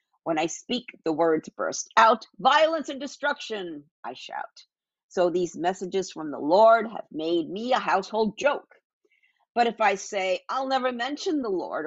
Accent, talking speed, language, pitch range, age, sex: American, 165 wpm, English, 170-240 Hz, 50-69, female